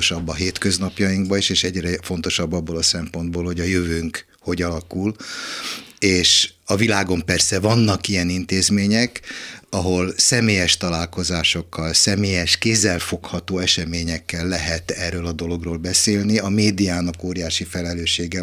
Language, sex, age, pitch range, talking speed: Hungarian, male, 60-79, 85-95 Hz, 115 wpm